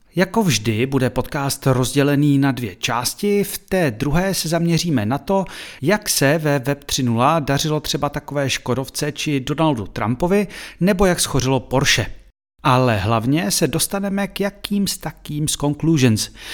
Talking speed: 150 wpm